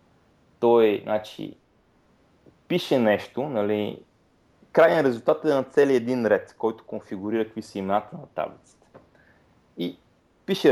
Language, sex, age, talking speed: Bulgarian, male, 30-49, 120 wpm